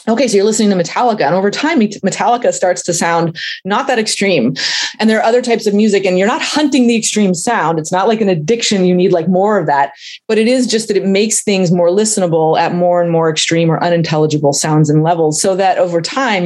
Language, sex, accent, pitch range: English, female, American, 170-210 Hz